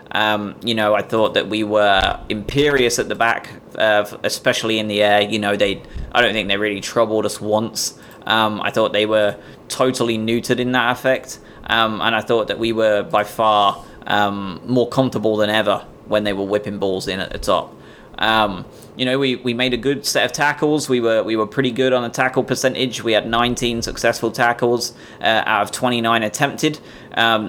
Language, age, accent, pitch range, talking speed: English, 20-39, British, 110-125 Hz, 205 wpm